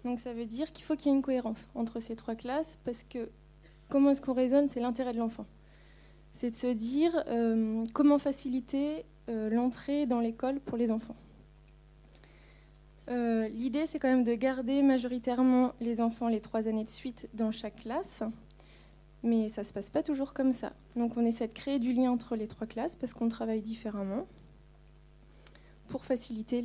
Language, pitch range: French, 225-255 Hz